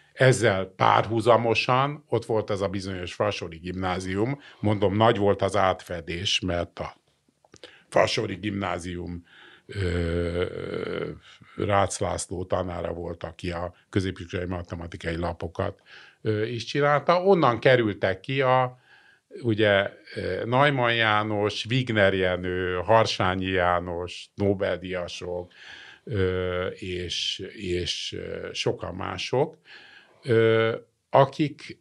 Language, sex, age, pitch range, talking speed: Hungarian, male, 50-69, 90-115 Hz, 85 wpm